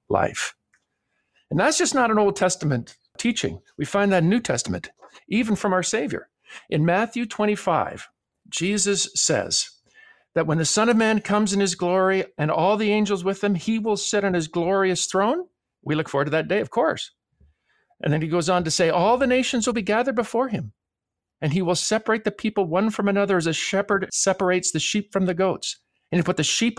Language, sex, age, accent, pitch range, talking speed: English, male, 50-69, American, 165-220 Hz, 210 wpm